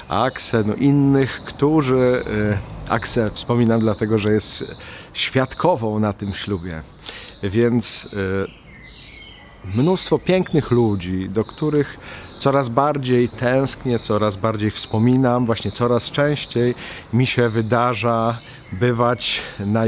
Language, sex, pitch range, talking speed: Polish, male, 105-135 Hz, 100 wpm